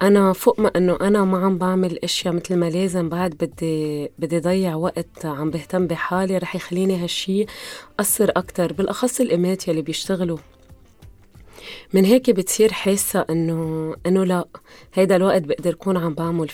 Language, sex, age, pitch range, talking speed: Arabic, female, 30-49, 165-195 Hz, 150 wpm